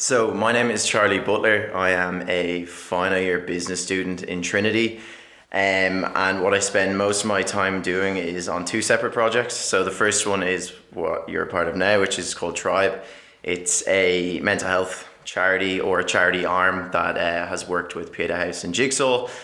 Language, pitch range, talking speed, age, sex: English, 90-105 Hz, 195 wpm, 20-39, male